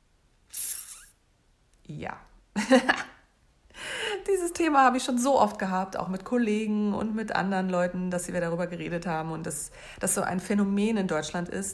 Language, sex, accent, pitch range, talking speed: German, female, German, 165-205 Hz, 155 wpm